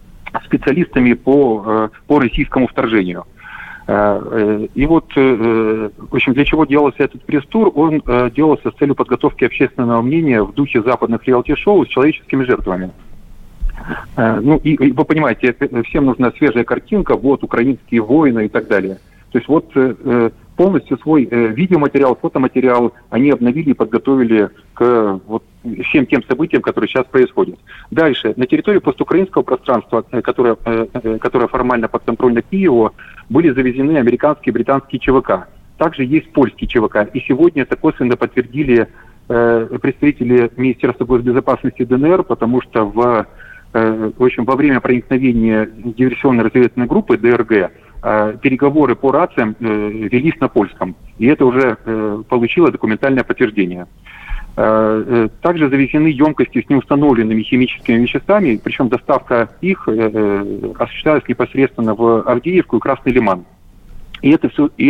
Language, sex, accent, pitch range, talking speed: Russian, male, native, 115-140 Hz, 130 wpm